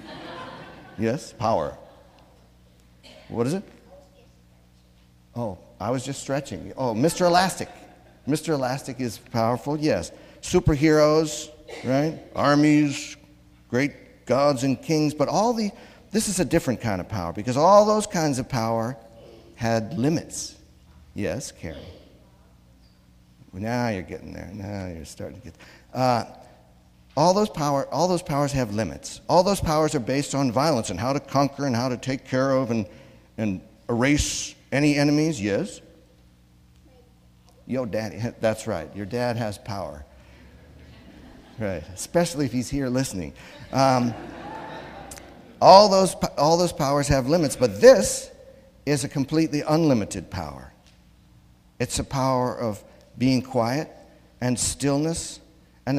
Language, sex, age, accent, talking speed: English, male, 50-69, American, 135 wpm